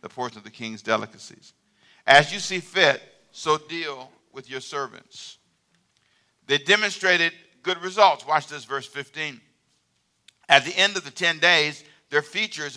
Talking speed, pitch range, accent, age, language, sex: 150 wpm, 140-190 Hz, American, 50-69, English, male